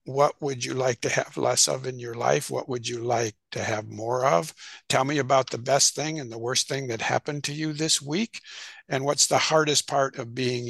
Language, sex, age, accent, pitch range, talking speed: English, male, 60-79, American, 125-175 Hz, 235 wpm